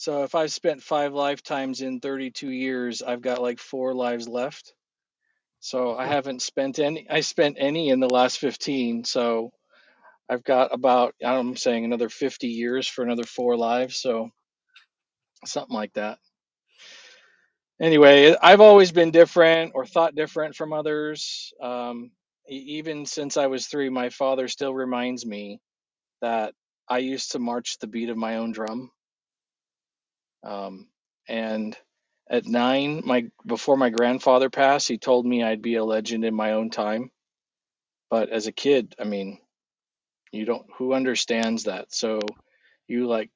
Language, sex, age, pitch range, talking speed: English, male, 40-59, 115-135 Hz, 160 wpm